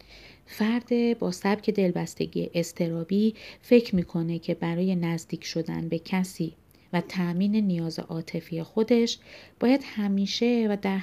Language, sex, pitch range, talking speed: Persian, female, 170-215 Hz, 120 wpm